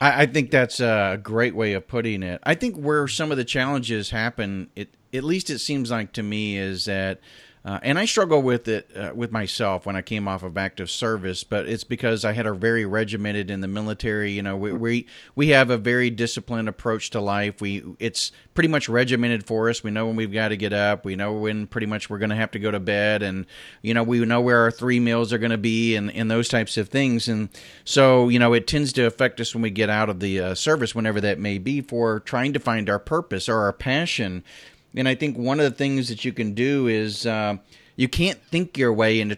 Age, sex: 40-59, male